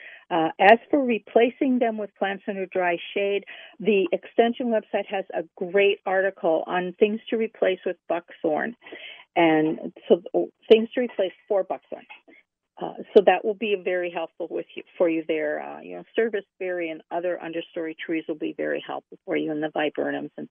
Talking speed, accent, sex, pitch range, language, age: 180 wpm, American, female, 180-225 Hz, English, 50-69